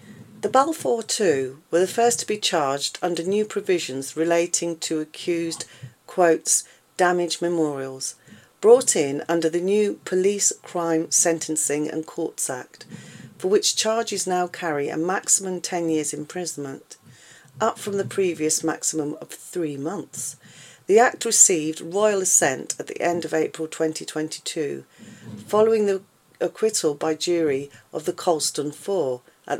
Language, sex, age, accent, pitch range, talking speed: English, female, 40-59, British, 150-190 Hz, 140 wpm